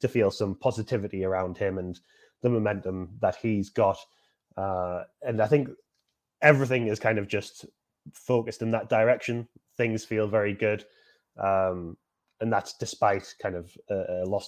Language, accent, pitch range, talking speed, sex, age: English, British, 95-115 Hz, 155 wpm, male, 20-39